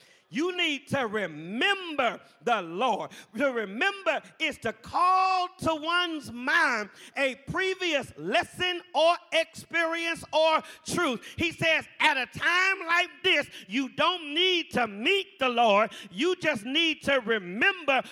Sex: male